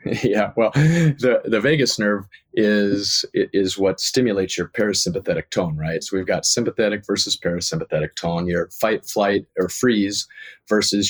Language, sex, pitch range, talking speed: English, male, 95-110 Hz, 145 wpm